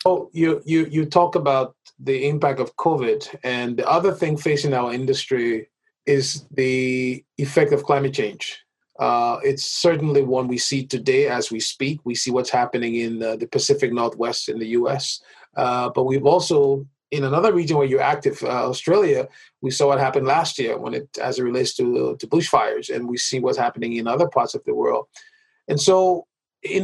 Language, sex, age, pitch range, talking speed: English, male, 30-49, 135-190 Hz, 190 wpm